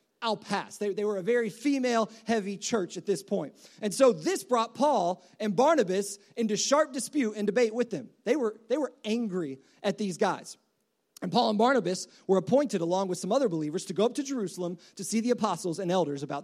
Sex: male